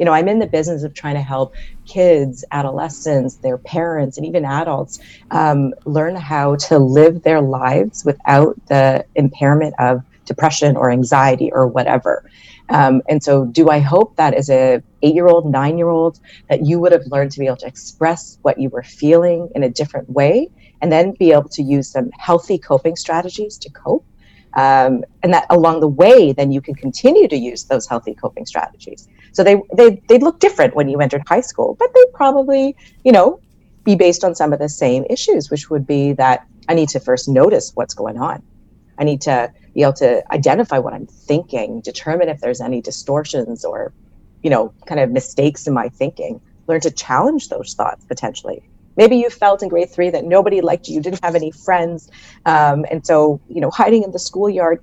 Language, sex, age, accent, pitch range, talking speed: English, female, 30-49, American, 140-175 Hz, 195 wpm